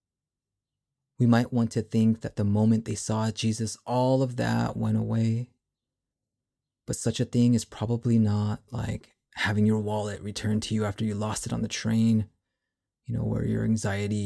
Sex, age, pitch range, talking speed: male, 30-49, 110-130 Hz, 175 wpm